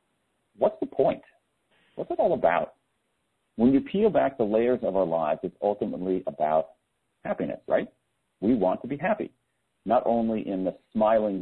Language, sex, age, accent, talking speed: English, male, 50-69, American, 165 wpm